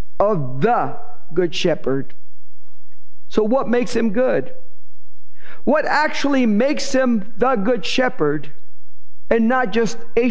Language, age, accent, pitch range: English, 50-69, American, 190-260 Hz